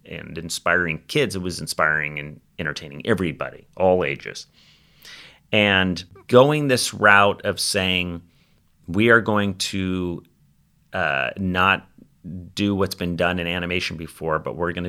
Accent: American